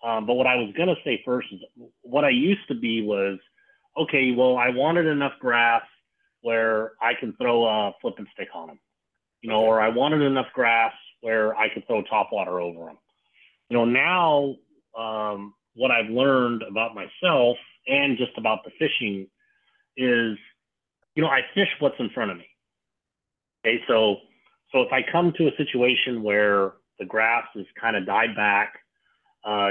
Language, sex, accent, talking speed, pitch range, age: English, male, American, 175 wpm, 105-130 Hz, 30-49